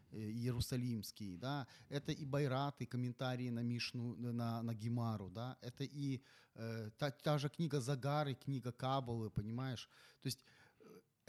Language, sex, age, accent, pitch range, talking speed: Ukrainian, male, 30-49, native, 115-155 Hz, 140 wpm